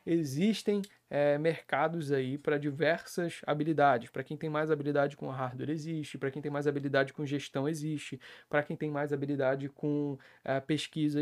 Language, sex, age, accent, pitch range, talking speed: Portuguese, male, 20-39, Brazilian, 140-160 Hz, 165 wpm